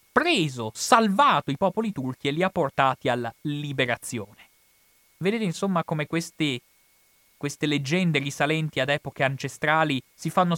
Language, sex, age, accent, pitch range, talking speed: Italian, male, 30-49, native, 125-165 Hz, 130 wpm